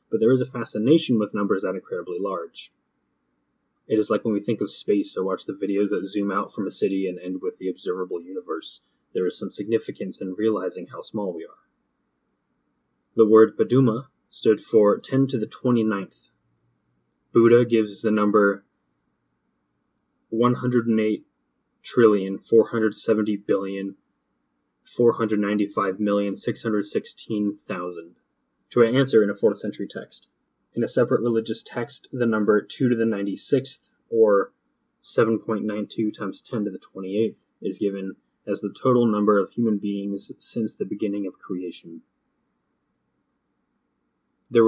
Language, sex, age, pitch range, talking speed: English, male, 20-39, 100-115 Hz, 135 wpm